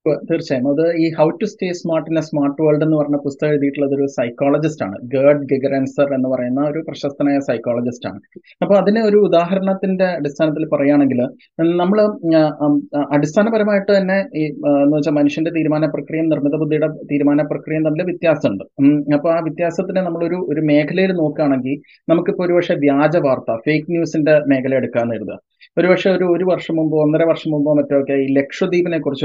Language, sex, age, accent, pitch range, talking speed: Malayalam, male, 30-49, native, 145-180 Hz, 150 wpm